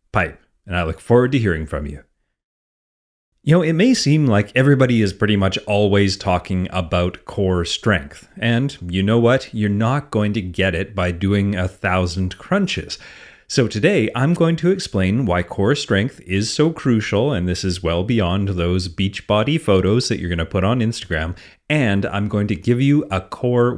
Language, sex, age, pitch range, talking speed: English, male, 30-49, 95-130 Hz, 185 wpm